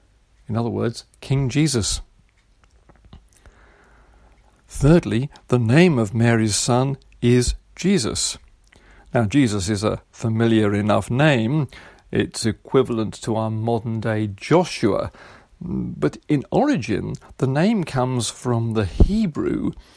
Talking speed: 110 wpm